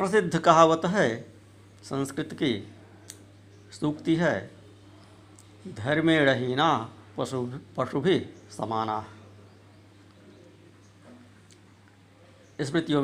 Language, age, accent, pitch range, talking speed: Hindi, 60-79, native, 100-135 Hz, 60 wpm